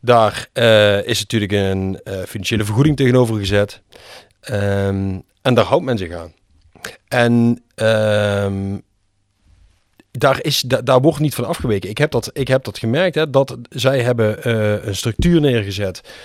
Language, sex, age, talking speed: Dutch, male, 30-49, 155 wpm